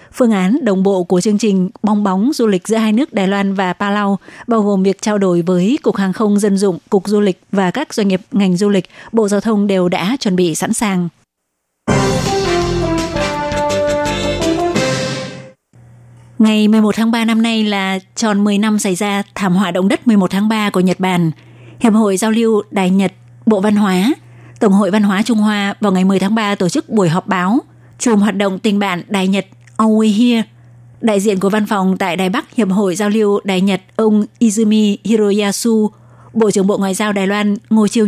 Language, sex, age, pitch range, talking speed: Vietnamese, female, 20-39, 190-220 Hz, 205 wpm